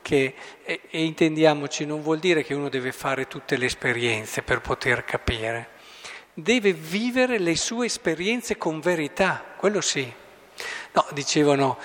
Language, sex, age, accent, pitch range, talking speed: Italian, male, 50-69, native, 140-205 Hz, 135 wpm